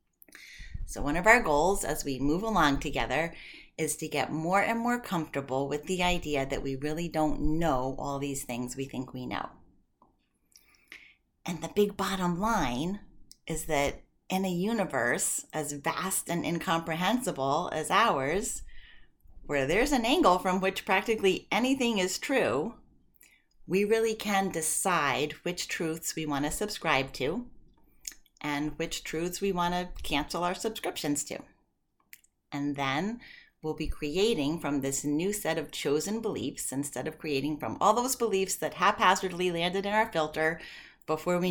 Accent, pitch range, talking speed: American, 150-200 Hz, 150 wpm